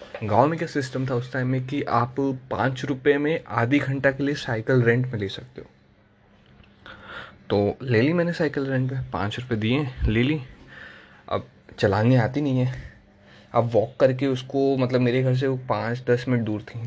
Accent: native